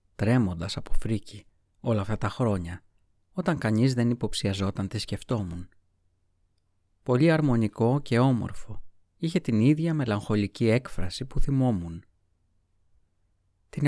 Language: Greek